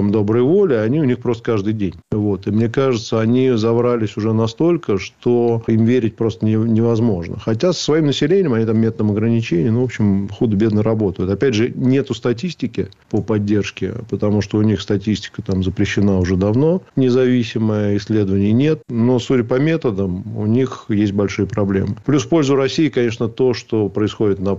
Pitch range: 100-120 Hz